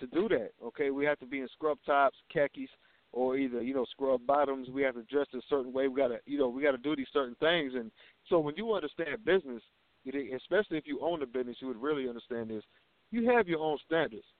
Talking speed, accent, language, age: 245 wpm, American, English, 50-69